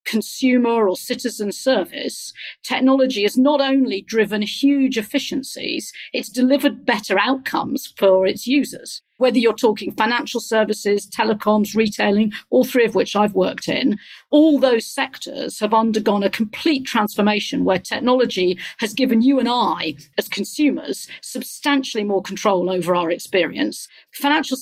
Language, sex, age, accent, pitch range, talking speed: English, female, 40-59, British, 200-255 Hz, 135 wpm